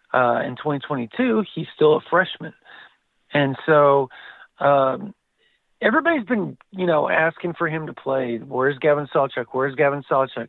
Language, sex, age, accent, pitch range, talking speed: English, male, 40-59, American, 125-155 Hz, 145 wpm